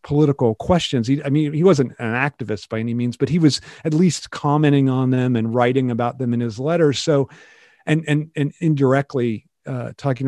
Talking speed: 200 wpm